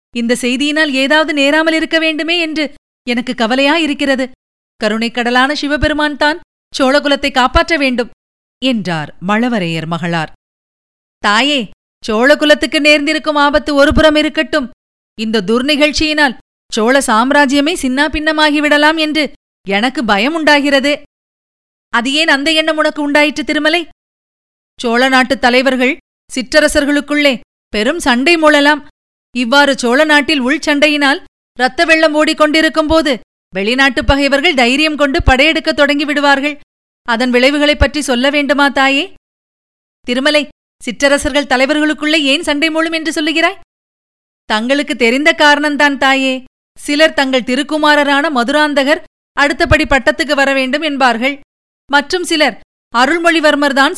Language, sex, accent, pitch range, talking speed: Tamil, female, native, 260-305 Hz, 100 wpm